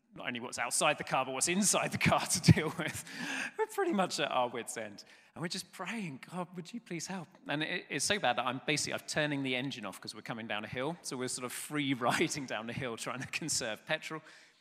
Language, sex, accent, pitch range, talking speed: English, male, British, 115-155 Hz, 255 wpm